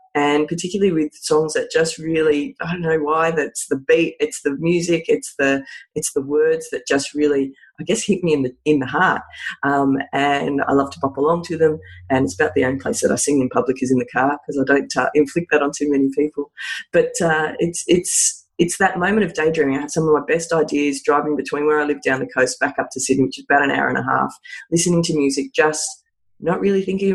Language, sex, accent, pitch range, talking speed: English, female, Australian, 135-170 Hz, 245 wpm